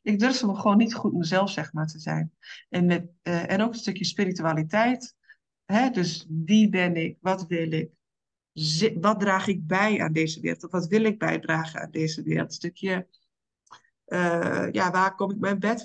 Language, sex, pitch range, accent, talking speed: Dutch, female, 165-200 Hz, Dutch, 195 wpm